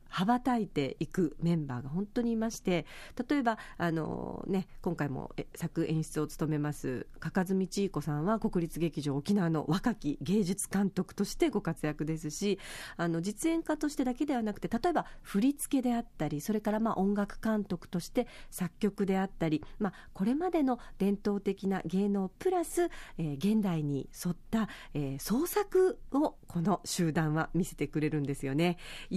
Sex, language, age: female, Japanese, 40-59